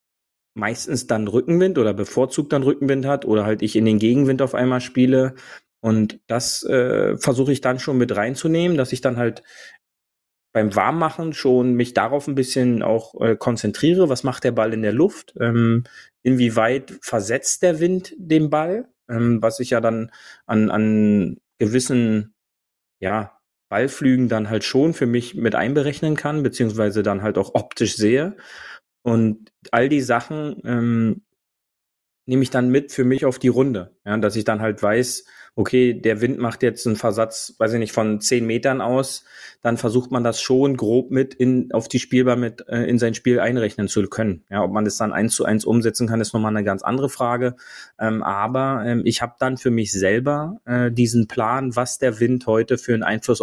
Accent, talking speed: German, 185 wpm